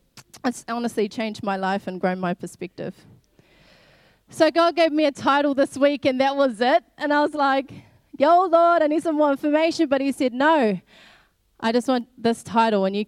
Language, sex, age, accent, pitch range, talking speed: English, female, 20-39, Australian, 220-280 Hz, 195 wpm